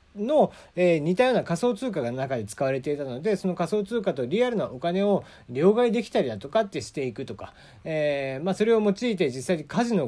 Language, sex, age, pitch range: Japanese, male, 40-59, 145-225 Hz